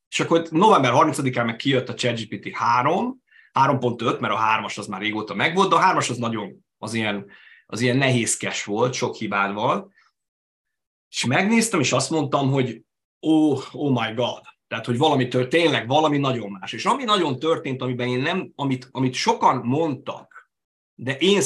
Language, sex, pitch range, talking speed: Hungarian, male, 110-155 Hz, 170 wpm